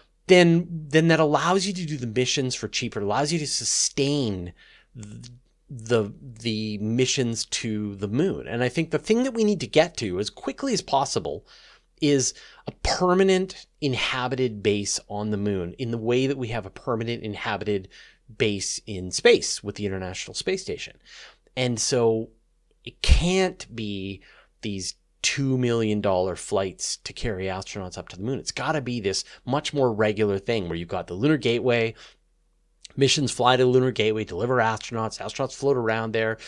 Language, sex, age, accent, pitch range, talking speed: English, male, 30-49, American, 105-140 Hz, 175 wpm